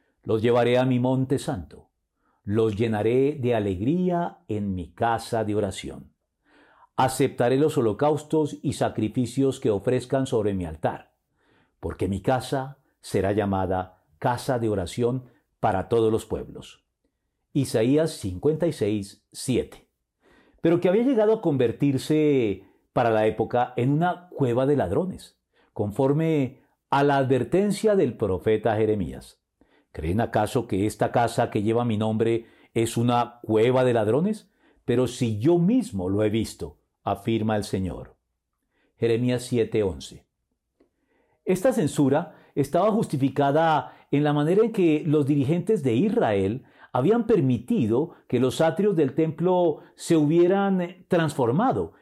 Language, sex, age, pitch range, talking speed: Spanish, male, 50-69, 115-155 Hz, 125 wpm